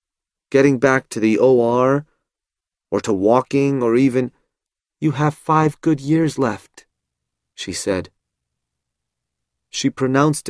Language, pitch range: Chinese, 100-140 Hz